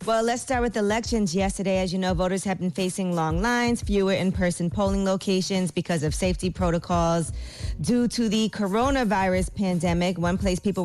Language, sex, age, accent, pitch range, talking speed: English, female, 20-39, American, 165-185 Hz, 170 wpm